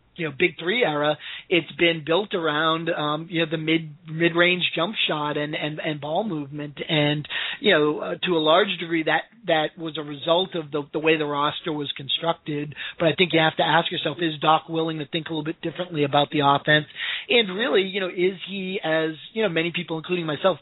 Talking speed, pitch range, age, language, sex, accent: 220 wpm, 150-175 Hz, 30-49, English, male, American